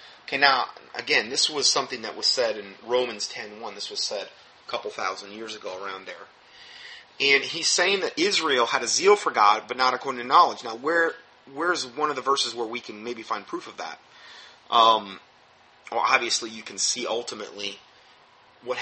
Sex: male